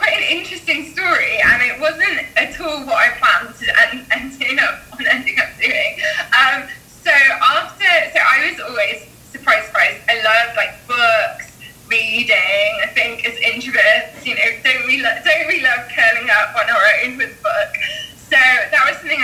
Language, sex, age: English, female, 20-39